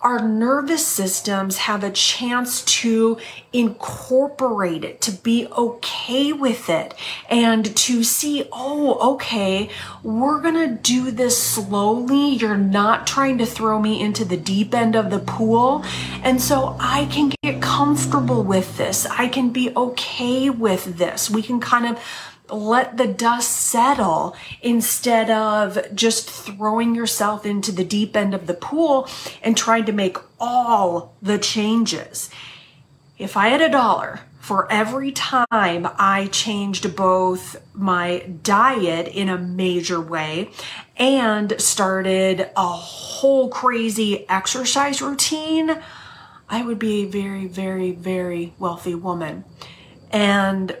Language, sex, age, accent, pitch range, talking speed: English, female, 30-49, American, 190-245 Hz, 135 wpm